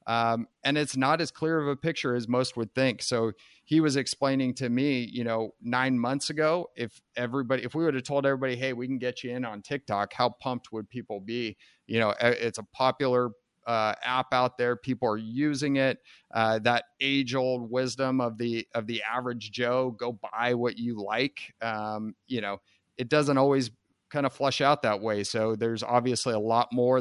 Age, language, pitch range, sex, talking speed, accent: 30-49, English, 115-130 Hz, male, 205 wpm, American